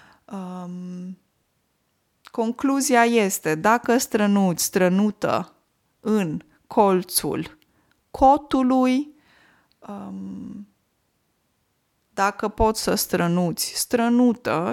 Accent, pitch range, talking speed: native, 180-245 Hz, 55 wpm